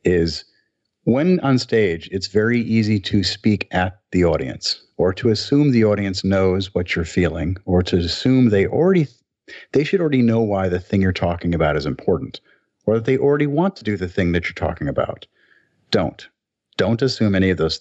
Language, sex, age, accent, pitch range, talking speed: English, male, 50-69, American, 90-110 Hz, 195 wpm